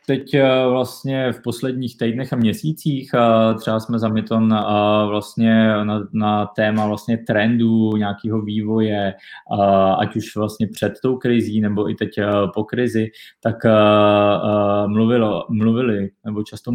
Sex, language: male, Czech